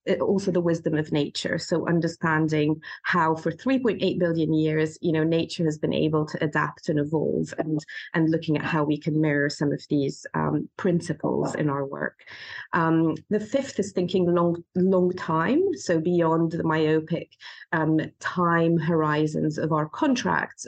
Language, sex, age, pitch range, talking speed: English, female, 30-49, 155-175 Hz, 165 wpm